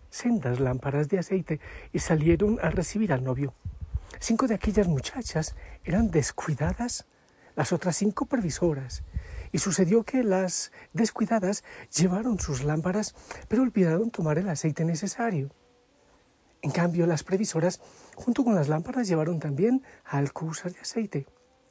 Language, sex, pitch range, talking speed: Spanish, male, 145-210 Hz, 130 wpm